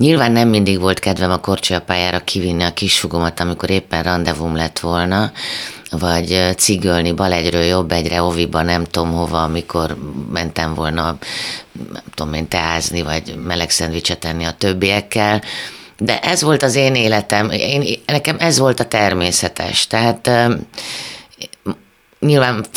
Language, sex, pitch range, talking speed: Hungarian, female, 90-110 Hz, 140 wpm